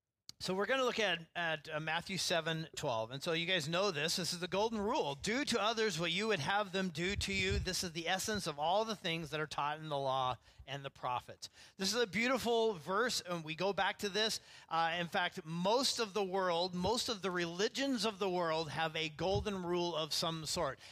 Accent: American